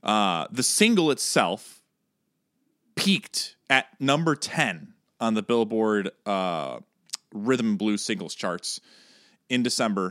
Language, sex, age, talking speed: English, male, 30-49, 115 wpm